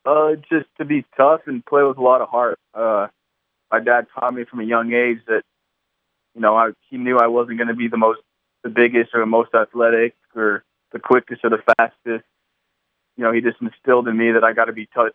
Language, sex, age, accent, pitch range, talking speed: English, male, 20-39, American, 115-120 Hz, 235 wpm